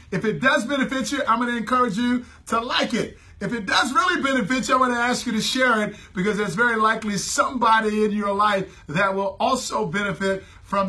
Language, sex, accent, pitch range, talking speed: English, male, American, 210-265 Hz, 220 wpm